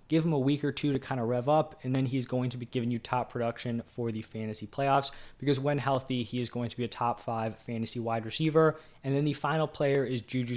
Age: 20-39